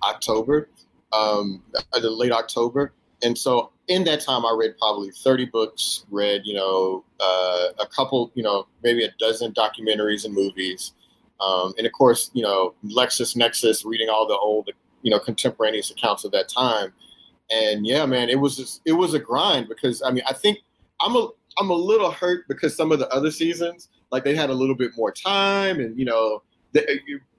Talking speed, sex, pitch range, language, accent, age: 190 wpm, male, 110-150 Hz, English, American, 30-49